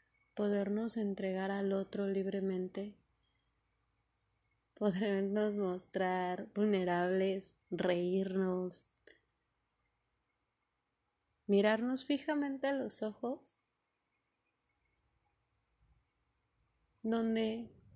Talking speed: 50 wpm